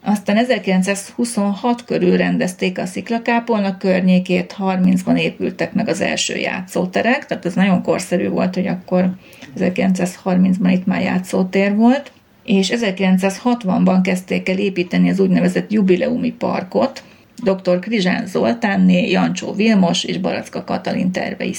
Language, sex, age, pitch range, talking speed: Hungarian, female, 30-49, 180-205 Hz, 120 wpm